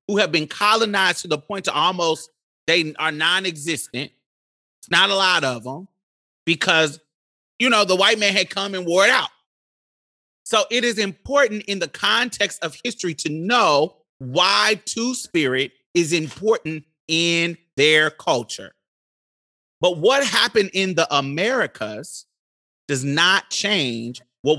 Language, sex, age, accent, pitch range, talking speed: English, male, 30-49, American, 135-195 Hz, 140 wpm